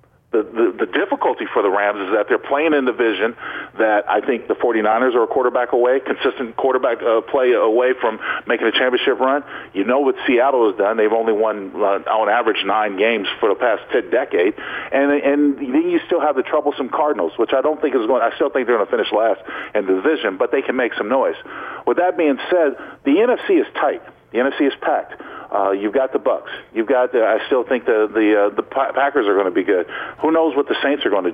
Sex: male